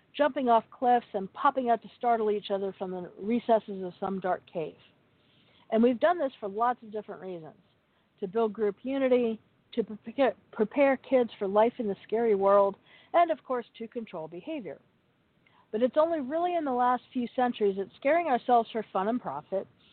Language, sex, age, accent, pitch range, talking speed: English, female, 50-69, American, 195-255 Hz, 185 wpm